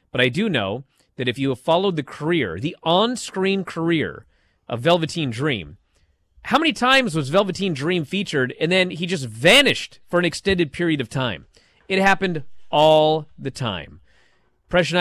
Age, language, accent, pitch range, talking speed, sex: 30-49, English, American, 125-170 Hz, 165 wpm, male